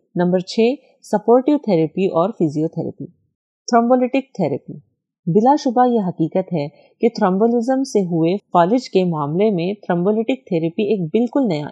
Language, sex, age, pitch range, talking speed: Urdu, female, 30-49, 170-225 Hz, 65 wpm